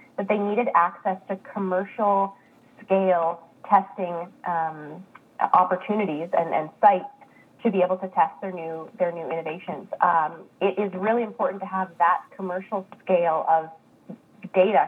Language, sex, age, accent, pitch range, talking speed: English, female, 20-39, American, 180-220 Hz, 140 wpm